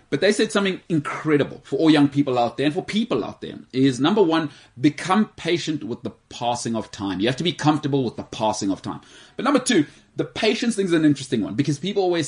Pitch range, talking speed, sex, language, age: 115-150 Hz, 240 wpm, male, English, 30-49